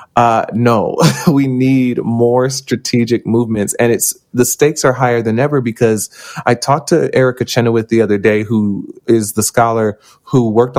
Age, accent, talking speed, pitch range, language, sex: 20-39, American, 165 wpm, 105-125 Hz, English, male